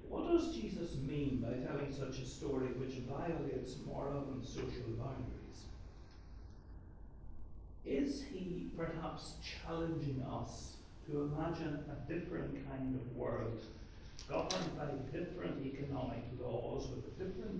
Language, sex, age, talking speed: English, male, 60-79, 120 wpm